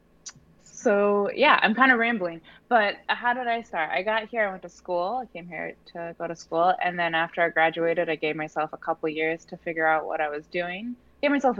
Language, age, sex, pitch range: English, 20-39, female, 145-185 Hz